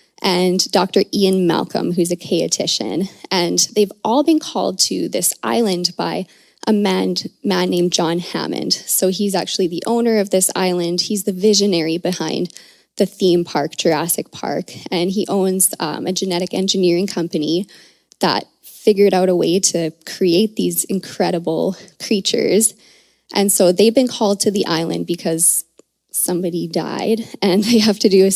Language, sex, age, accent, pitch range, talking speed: English, female, 20-39, American, 175-210 Hz, 155 wpm